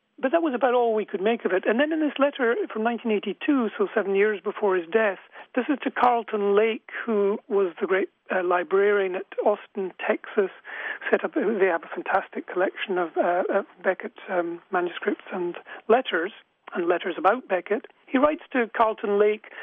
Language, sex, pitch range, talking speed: English, male, 195-245 Hz, 180 wpm